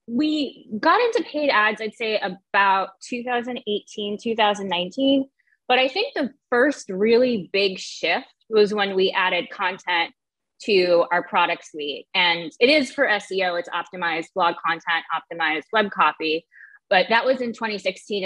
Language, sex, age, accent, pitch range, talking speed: English, female, 20-39, American, 175-220 Hz, 145 wpm